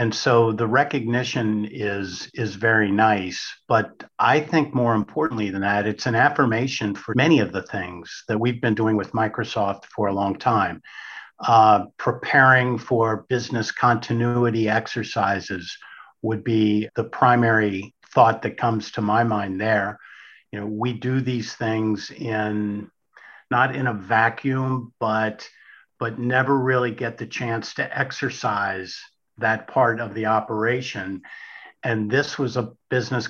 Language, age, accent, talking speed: English, 50-69, American, 145 wpm